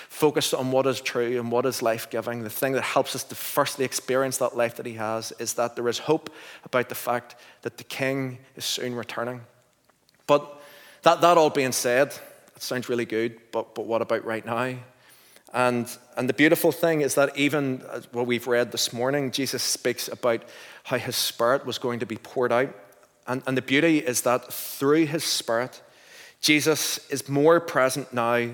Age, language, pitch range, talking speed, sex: 30-49, English, 120-135 Hz, 195 wpm, male